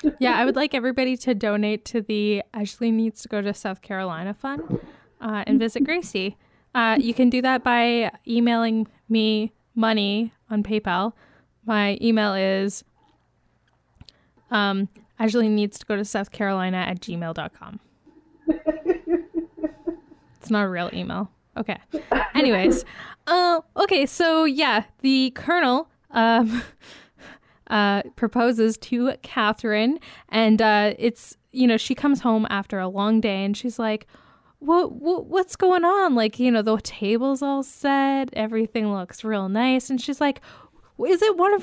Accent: American